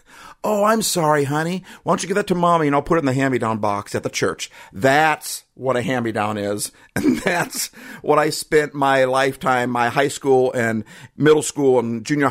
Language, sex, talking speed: English, male, 205 wpm